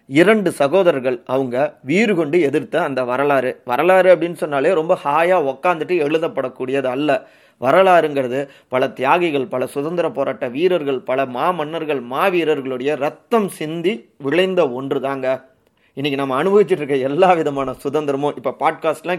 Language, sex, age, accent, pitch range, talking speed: Tamil, male, 30-49, native, 135-180 Hz, 130 wpm